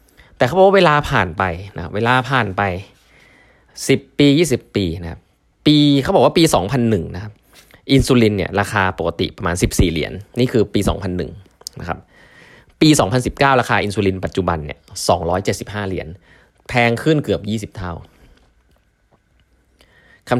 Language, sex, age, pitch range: Thai, male, 20-39, 90-125 Hz